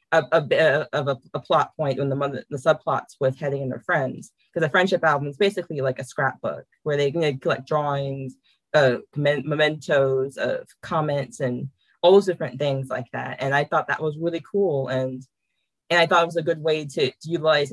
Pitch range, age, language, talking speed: 130-160 Hz, 20-39, English, 215 wpm